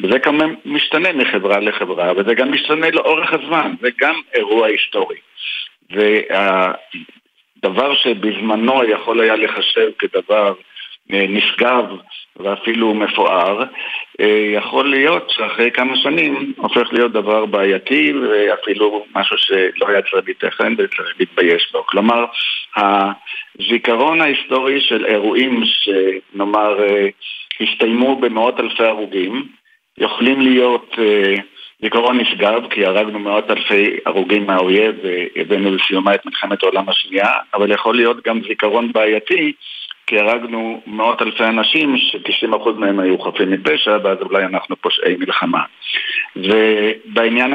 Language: Hebrew